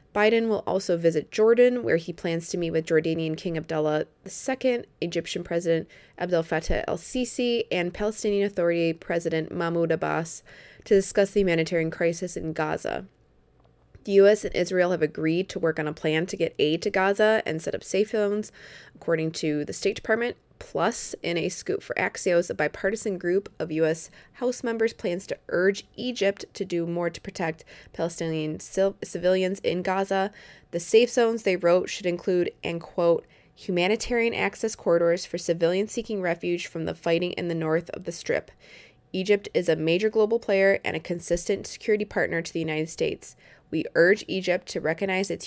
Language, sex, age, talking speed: English, female, 20-39, 175 wpm